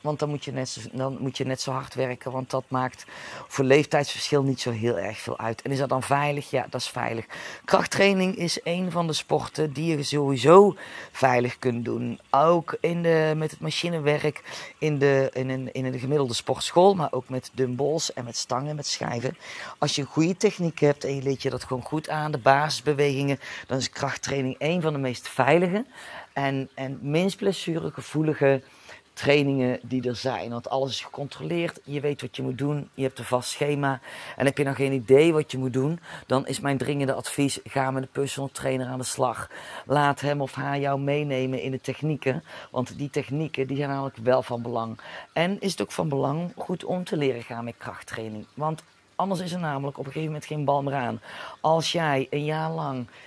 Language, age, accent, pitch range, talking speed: Dutch, 30-49, Dutch, 130-150 Hz, 210 wpm